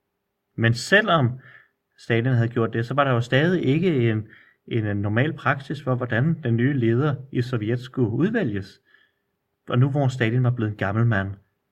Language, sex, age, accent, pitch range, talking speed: Danish, male, 30-49, native, 105-130 Hz, 175 wpm